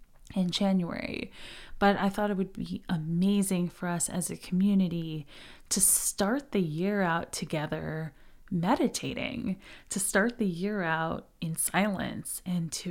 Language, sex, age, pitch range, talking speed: English, female, 30-49, 170-195 Hz, 140 wpm